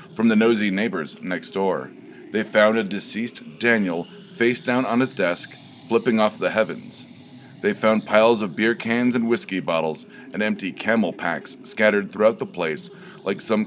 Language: English